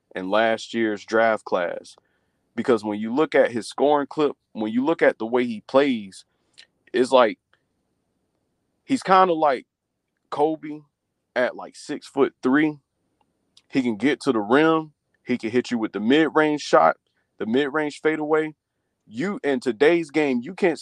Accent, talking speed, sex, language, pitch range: American, 165 wpm, male, English, 125-175 Hz